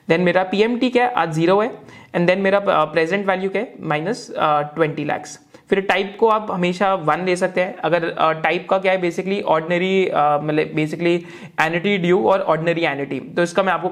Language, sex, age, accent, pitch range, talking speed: Hindi, male, 20-39, native, 165-210 Hz, 195 wpm